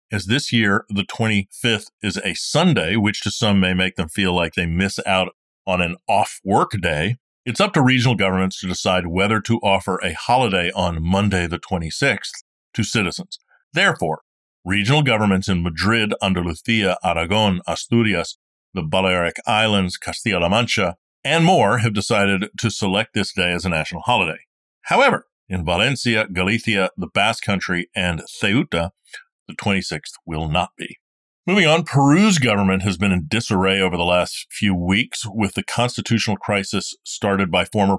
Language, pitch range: English, 90-110 Hz